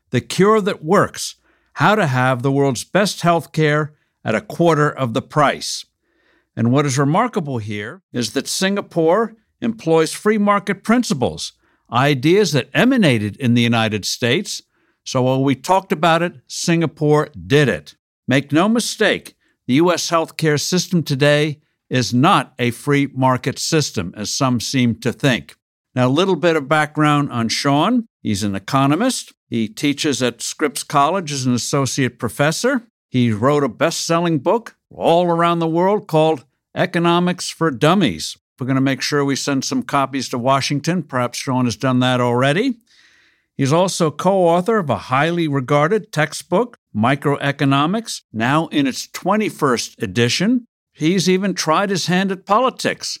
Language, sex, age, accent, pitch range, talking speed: English, male, 60-79, American, 130-175 Hz, 150 wpm